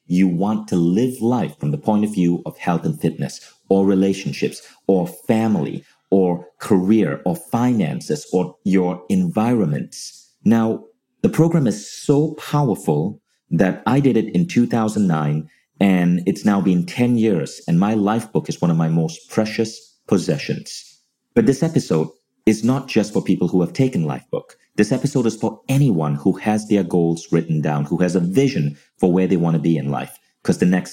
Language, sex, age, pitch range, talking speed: English, male, 30-49, 85-115 Hz, 175 wpm